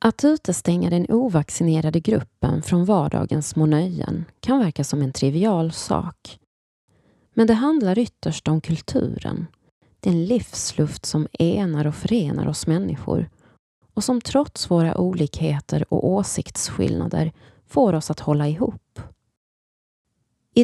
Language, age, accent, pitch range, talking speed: Swedish, 30-49, native, 145-195 Hz, 120 wpm